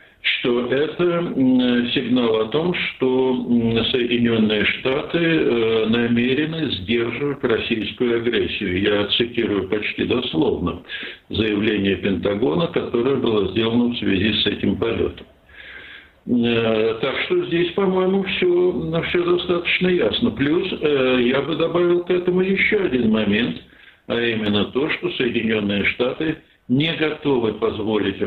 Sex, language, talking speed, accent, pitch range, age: male, Russian, 110 wpm, native, 105-145 Hz, 60-79